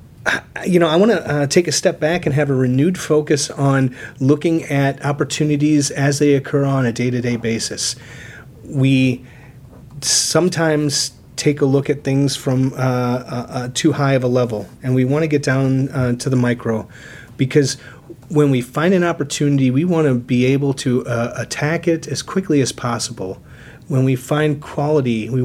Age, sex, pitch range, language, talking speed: 30-49, male, 120-145 Hz, English, 175 wpm